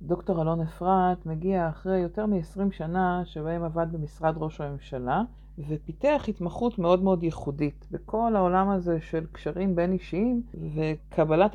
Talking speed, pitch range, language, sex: 135 wpm, 150-195 Hz, Hebrew, female